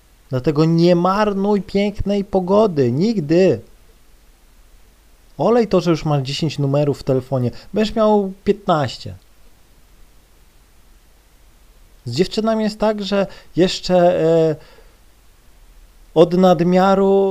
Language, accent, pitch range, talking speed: Polish, native, 130-175 Hz, 95 wpm